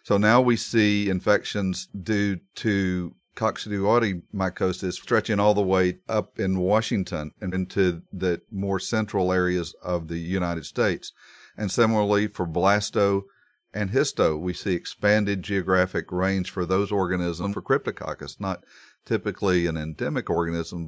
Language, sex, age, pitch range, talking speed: English, male, 40-59, 85-100 Hz, 135 wpm